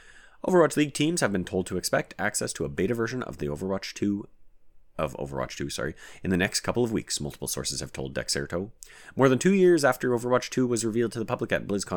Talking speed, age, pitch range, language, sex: 230 wpm, 30-49, 80-120 Hz, English, male